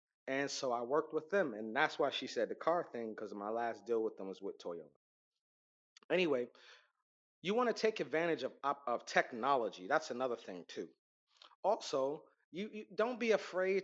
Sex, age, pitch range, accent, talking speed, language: male, 30-49, 135-195 Hz, American, 180 wpm, English